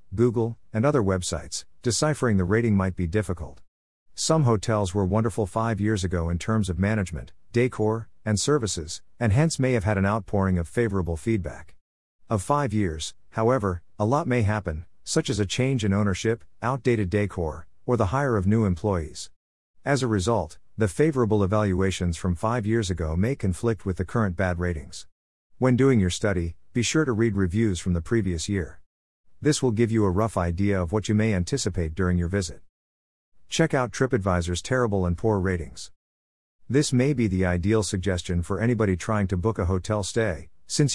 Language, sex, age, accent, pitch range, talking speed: English, male, 50-69, American, 90-115 Hz, 180 wpm